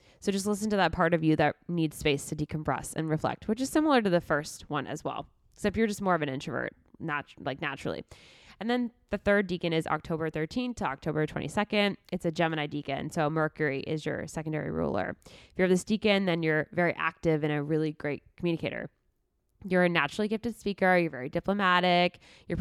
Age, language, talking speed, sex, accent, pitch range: 20-39, English, 205 wpm, female, American, 160-215 Hz